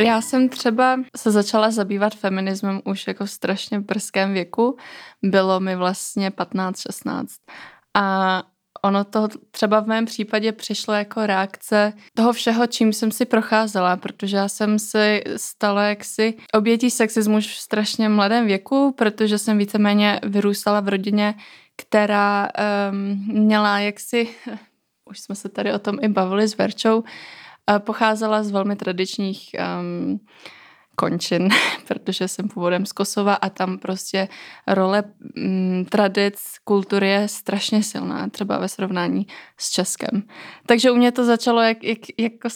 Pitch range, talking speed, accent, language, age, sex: 195-225 Hz, 140 wpm, native, Czech, 20-39, female